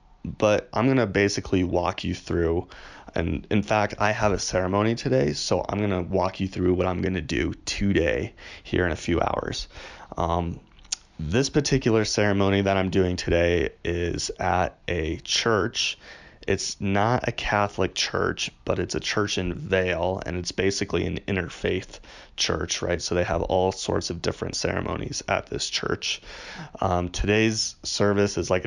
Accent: American